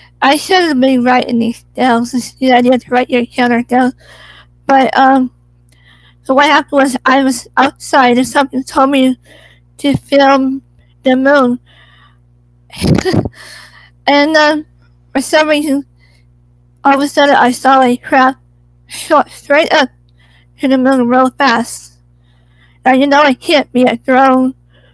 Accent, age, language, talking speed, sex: American, 50-69, English, 145 wpm, female